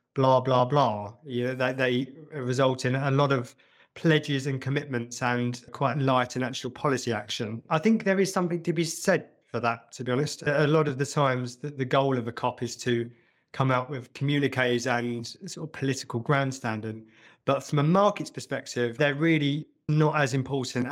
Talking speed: 190 wpm